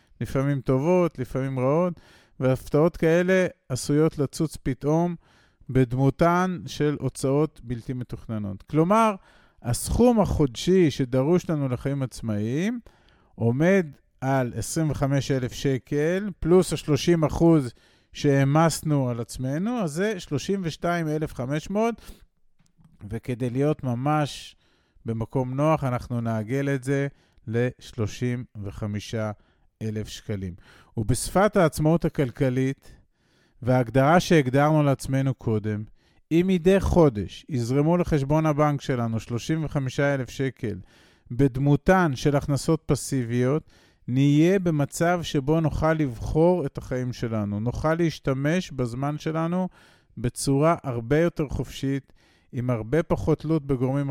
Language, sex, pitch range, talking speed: Hebrew, male, 120-160 Hz, 95 wpm